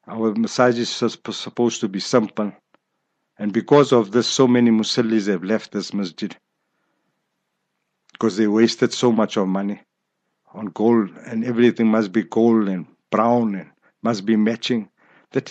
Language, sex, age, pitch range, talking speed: English, male, 60-79, 105-120 Hz, 150 wpm